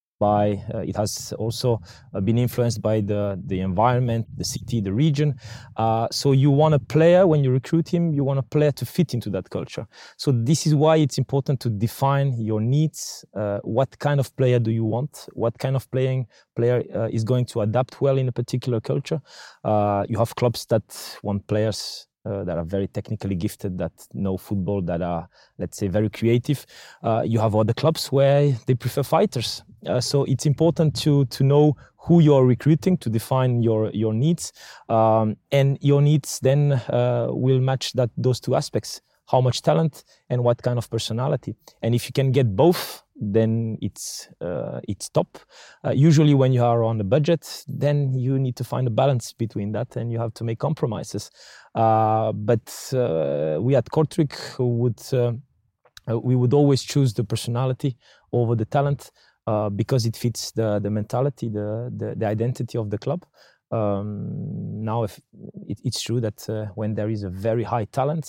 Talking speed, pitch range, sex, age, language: 185 wpm, 110-140 Hz, male, 20-39, Dutch